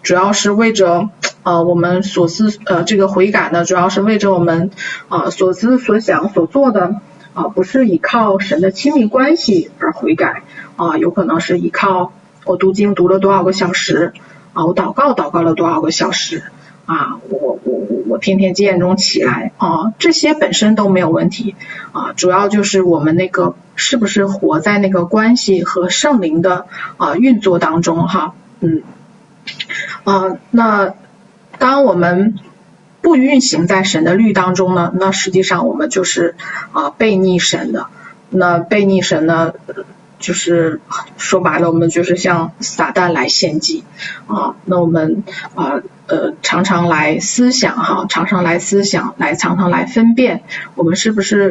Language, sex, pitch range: Chinese, female, 175-205 Hz